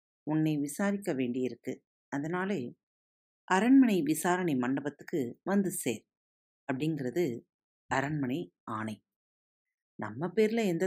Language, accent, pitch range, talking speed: Tamil, native, 130-200 Hz, 85 wpm